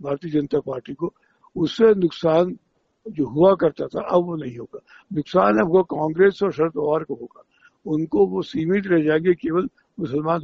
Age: 60-79